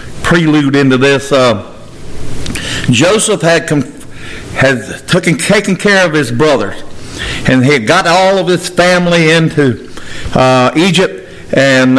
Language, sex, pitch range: English, male, 125-170 Hz